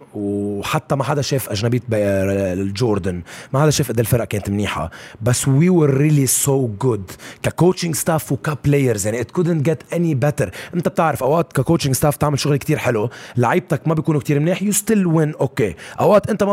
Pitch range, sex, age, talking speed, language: 115-160 Hz, male, 30-49, 185 wpm, Arabic